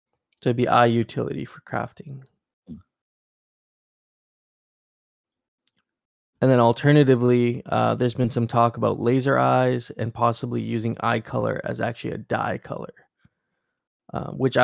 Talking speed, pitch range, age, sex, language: 120 wpm, 115-130 Hz, 20-39, male, English